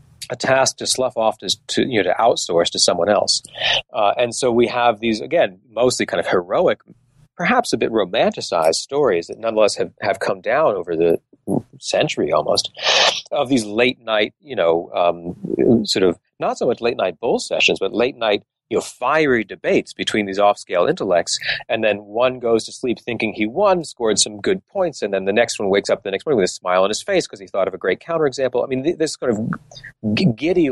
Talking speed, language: 210 wpm, English